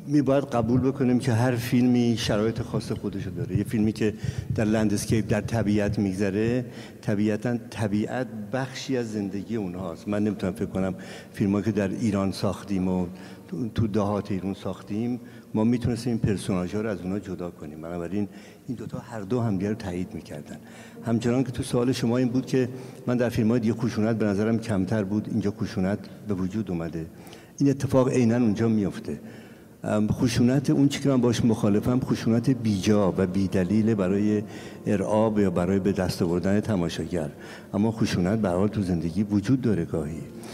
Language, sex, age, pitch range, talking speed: Persian, male, 60-79, 100-120 Hz, 165 wpm